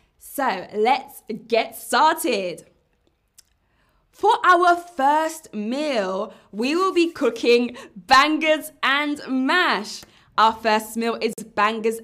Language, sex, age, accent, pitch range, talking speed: English, female, 20-39, British, 205-265 Hz, 100 wpm